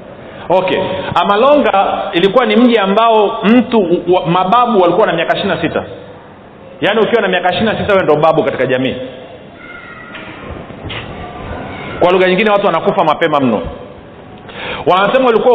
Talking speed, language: 125 wpm, Swahili